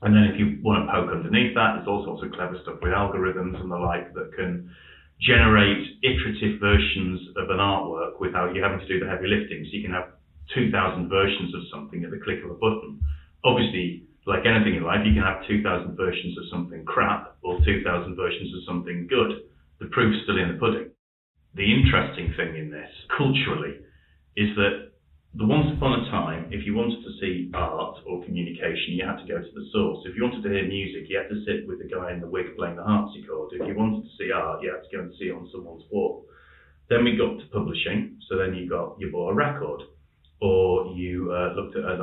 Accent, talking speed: British, 225 wpm